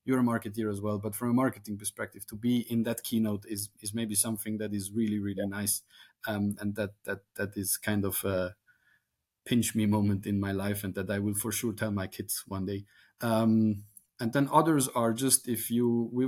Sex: male